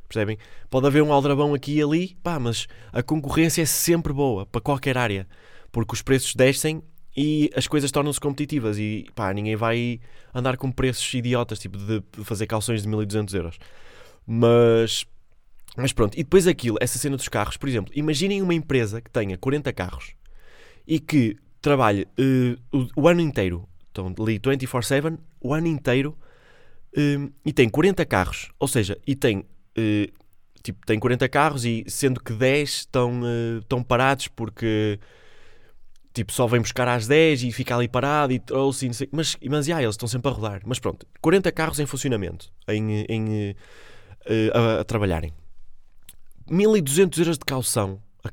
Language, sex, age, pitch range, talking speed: Portuguese, male, 20-39, 110-145 Hz, 175 wpm